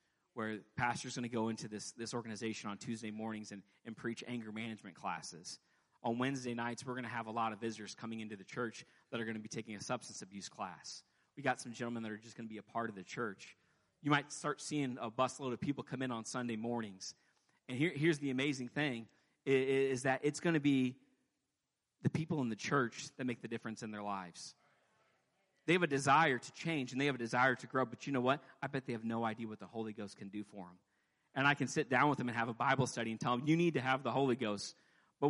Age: 30-49